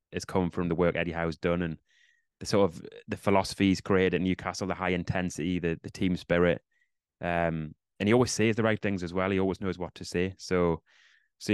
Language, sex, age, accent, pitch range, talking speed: English, male, 20-39, British, 90-105 Hz, 220 wpm